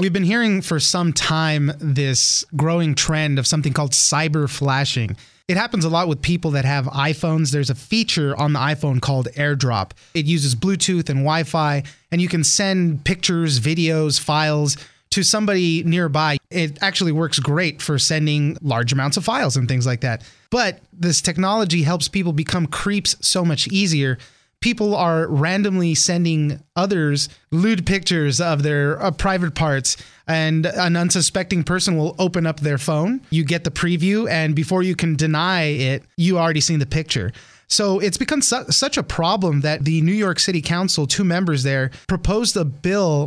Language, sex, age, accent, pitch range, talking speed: English, male, 30-49, American, 145-180 Hz, 170 wpm